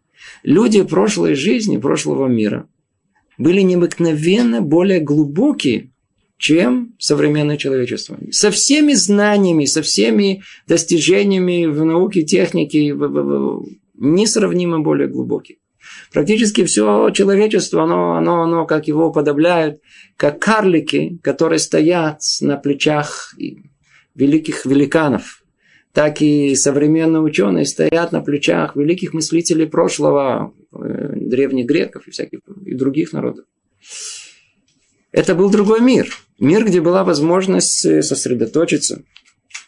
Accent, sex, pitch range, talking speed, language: native, male, 140-185 Hz, 100 wpm, Russian